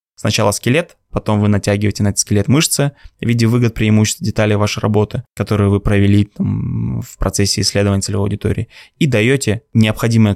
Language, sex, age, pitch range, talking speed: Russian, male, 20-39, 105-125 Hz, 160 wpm